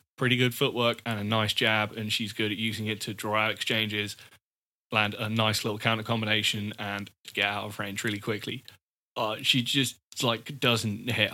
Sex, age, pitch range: male, 20-39, 105-120 Hz